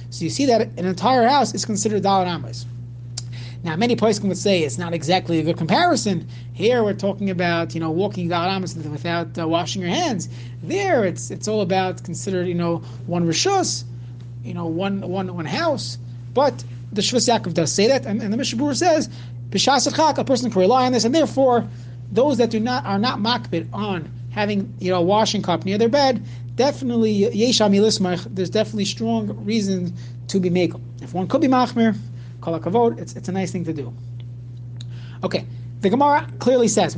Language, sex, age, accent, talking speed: English, male, 30-49, American, 190 wpm